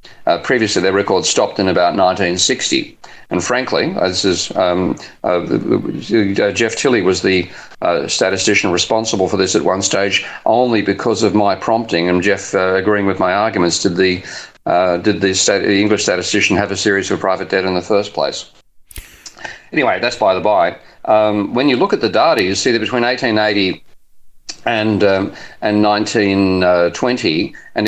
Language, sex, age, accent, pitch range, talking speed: English, male, 40-59, Australian, 90-110 Hz, 165 wpm